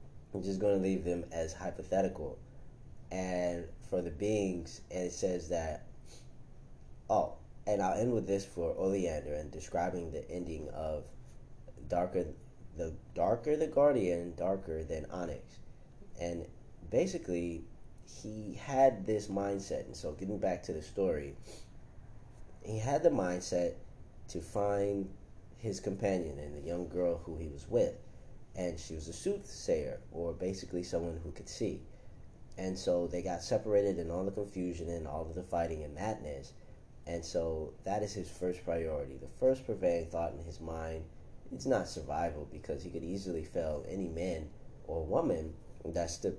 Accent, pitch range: American, 80-100 Hz